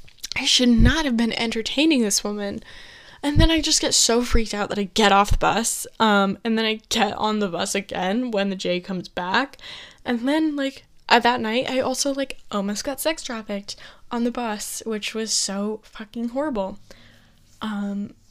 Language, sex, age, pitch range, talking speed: English, female, 10-29, 205-245 Hz, 190 wpm